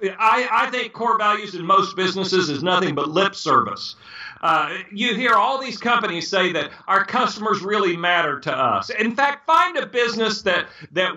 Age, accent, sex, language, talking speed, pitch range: 50-69, American, male, English, 185 wpm, 185-245 Hz